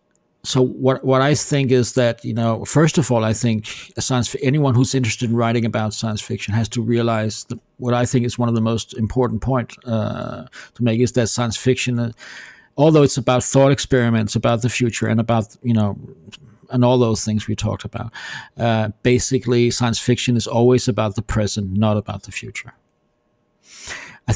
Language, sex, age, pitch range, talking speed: English, male, 50-69, 115-135 Hz, 185 wpm